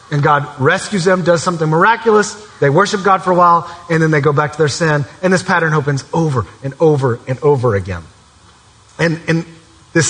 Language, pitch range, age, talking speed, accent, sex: English, 130-185 Hz, 30-49, 200 wpm, American, male